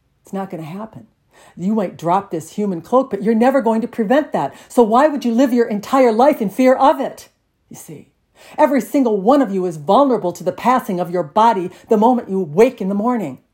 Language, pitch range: English, 155-245 Hz